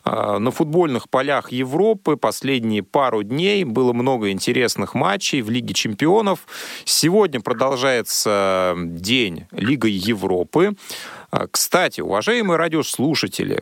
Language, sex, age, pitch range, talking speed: Russian, male, 30-49, 95-135 Hz, 95 wpm